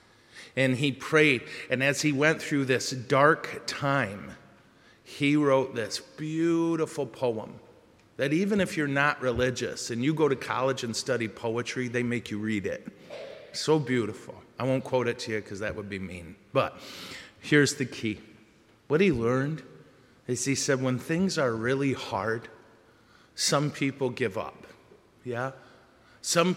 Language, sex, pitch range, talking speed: English, male, 125-165 Hz, 155 wpm